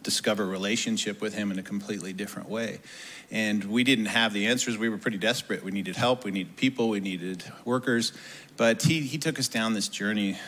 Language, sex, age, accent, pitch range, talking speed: English, male, 40-59, American, 105-125 Hz, 205 wpm